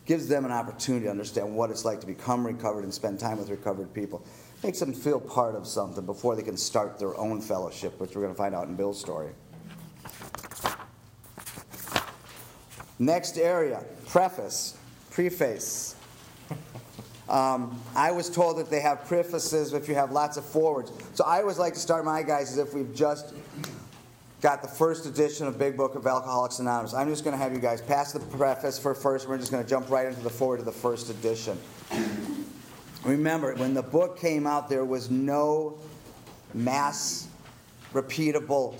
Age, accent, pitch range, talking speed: 40-59, American, 120-145 Hz, 180 wpm